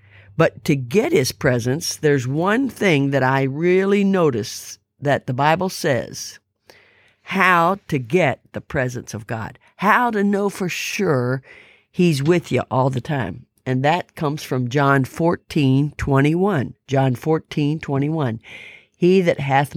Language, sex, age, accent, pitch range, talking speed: English, female, 50-69, American, 135-180 Hz, 135 wpm